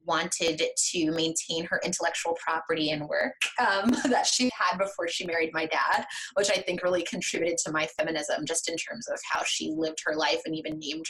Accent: American